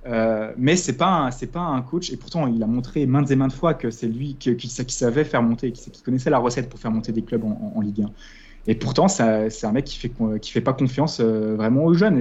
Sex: male